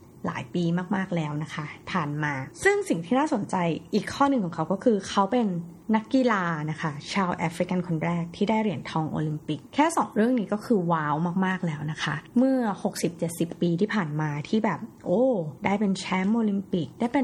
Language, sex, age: Thai, female, 20-39